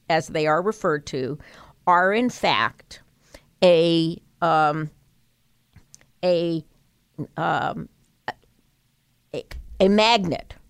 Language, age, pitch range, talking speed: English, 50-69, 150-185 Hz, 85 wpm